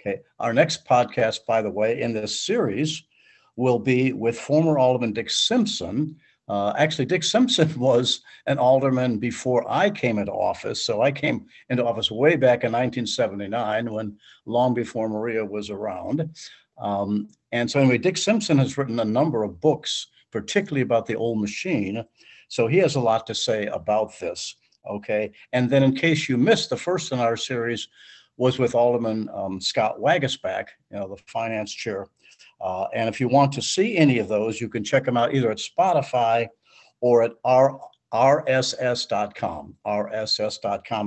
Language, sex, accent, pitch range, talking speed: English, male, American, 110-135 Hz, 170 wpm